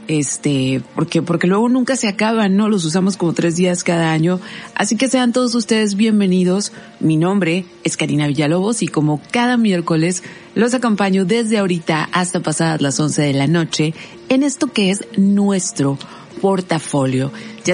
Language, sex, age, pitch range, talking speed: Spanish, female, 40-59, 160-220 Hz, 160 wpm